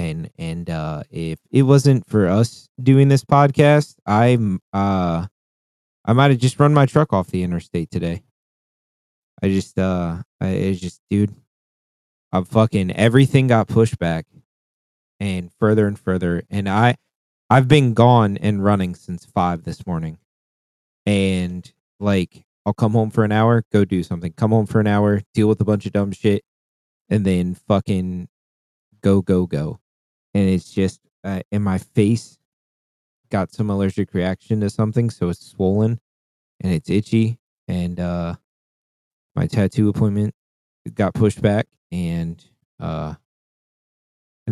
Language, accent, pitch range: English, American, 90-110 Hz